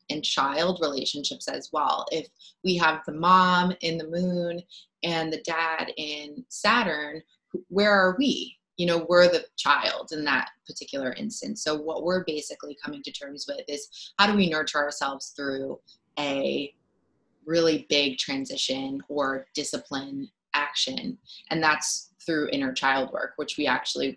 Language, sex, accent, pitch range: English, female, American, 150-185 Hz